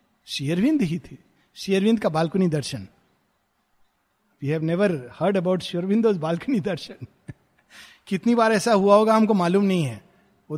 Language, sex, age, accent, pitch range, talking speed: Hindi, male, 50-69, native, 155-205 Hz, 95 wpm